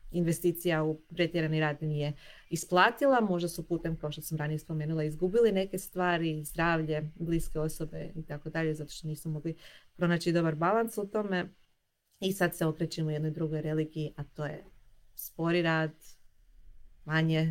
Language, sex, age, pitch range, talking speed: Croatian, female, 30-49, 155-200 Hz, 160 wpm